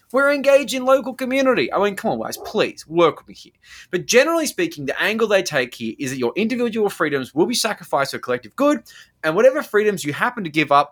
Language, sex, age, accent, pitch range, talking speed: English, male, 20-39, Australian, 145-230 Hz, 230 wpm